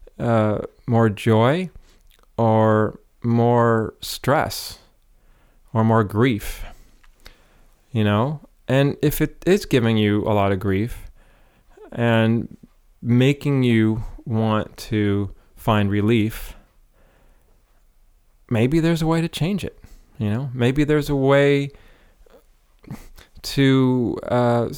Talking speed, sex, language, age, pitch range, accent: 105 wpm, male, English, 30-49, 105-130 Hz, American